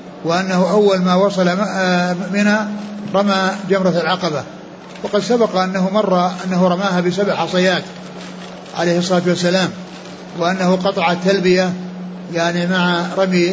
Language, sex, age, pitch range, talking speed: Arabic, male, 60-79, 180-205 Hz, 110 wpm